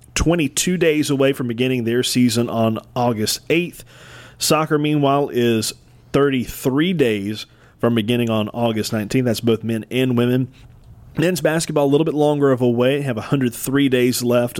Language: English